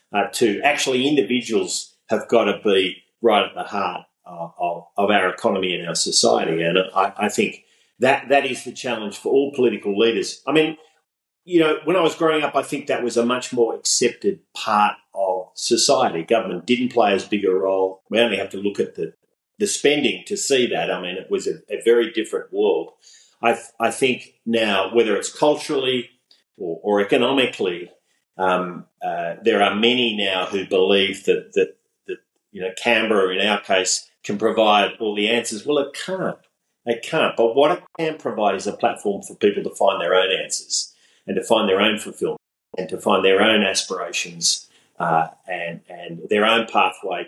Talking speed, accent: 190 wpm, Australian